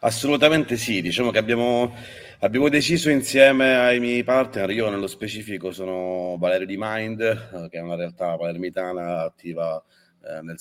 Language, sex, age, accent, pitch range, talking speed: Italian, male, 30-49, native, 85-110 Hz, 145 wpm